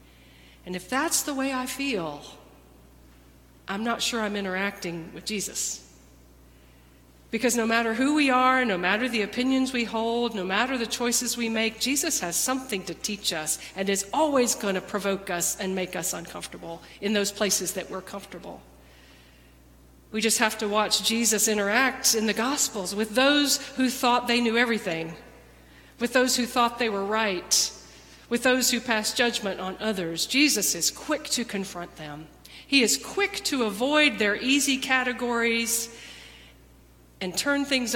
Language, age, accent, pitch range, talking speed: English, 50-69, American, 180-255 Hz, 165 wpm